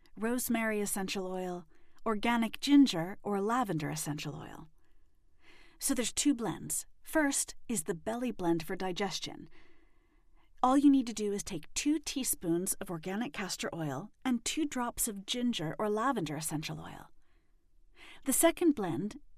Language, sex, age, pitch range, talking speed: English, female, 40-59, 175-265 Hz, 140 wpm